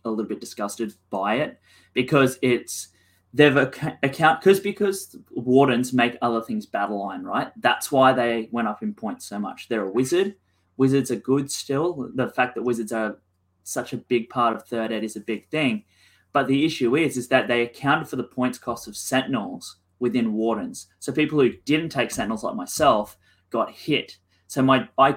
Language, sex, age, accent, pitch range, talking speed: English, male, 20-39, Australian, 105-135 Hz, 195 wpm